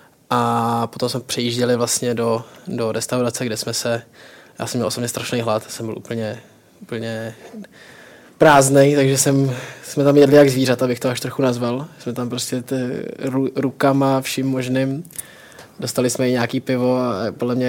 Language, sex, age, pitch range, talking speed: Czech, male, 20-39, 115-125 Hz, 165 wpm